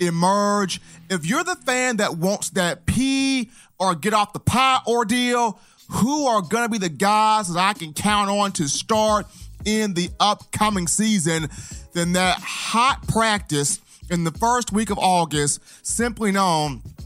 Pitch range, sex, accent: 175-235 Hz, male, American